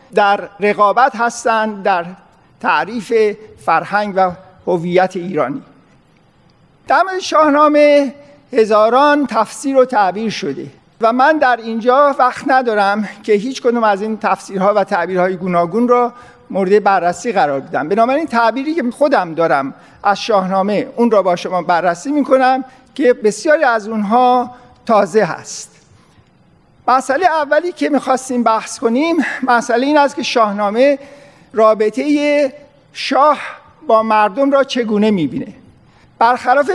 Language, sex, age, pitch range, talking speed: Persian, male, 50-69, 205-275 Hz, 125 wpm